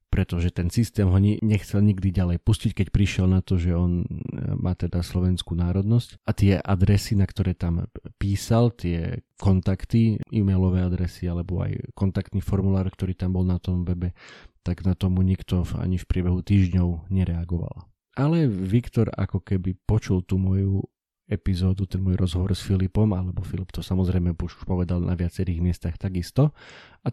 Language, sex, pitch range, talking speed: Slovak, male, 90-105 Hz, 160 wpm